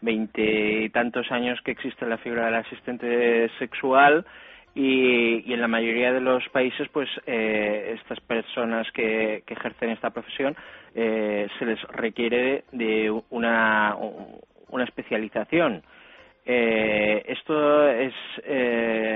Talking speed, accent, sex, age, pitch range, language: 125 wpm, Spanish, male, 20-39, 105-120 Hz, Spanish